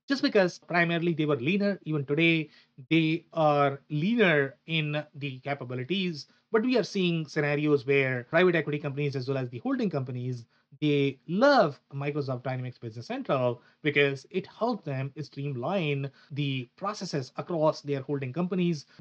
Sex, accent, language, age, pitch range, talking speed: male, Indian, English, 30-49, 140-165 Hz, 145 wpm